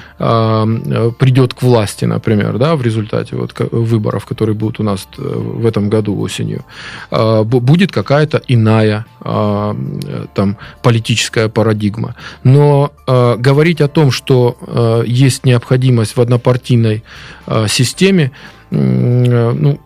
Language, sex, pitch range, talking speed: Russian, male, 115-135 Hz, 95 wpm